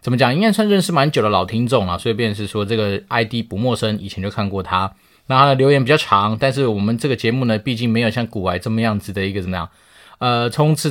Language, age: Chinese, 20-39